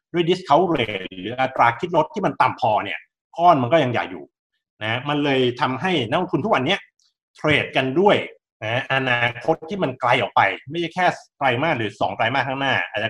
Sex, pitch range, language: male, 115-155 Hz, Thai